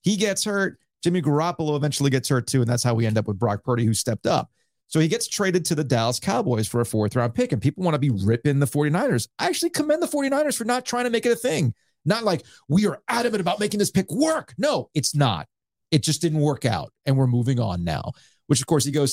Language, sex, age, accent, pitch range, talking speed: English, male, 40-59, American, 125-190 Hz, 255 wpm